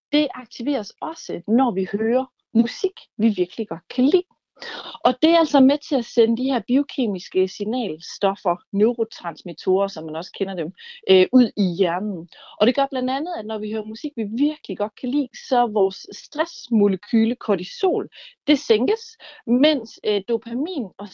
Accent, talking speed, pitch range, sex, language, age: native, 160 wpm, 195-265 Hz, female, Danish, 40-59